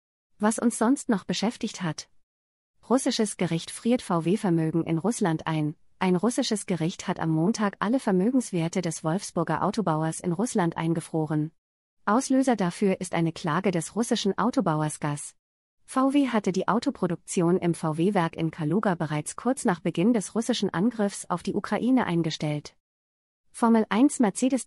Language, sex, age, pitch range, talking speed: German, female, 30-49, 165-225 Hz, 140 wpm